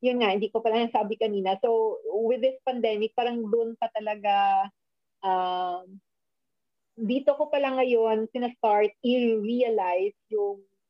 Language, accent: English, Filipino